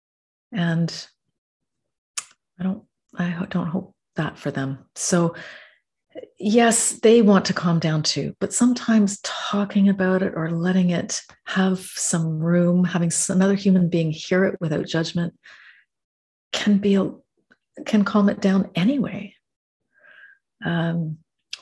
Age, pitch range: 40-59, 175-215 Hz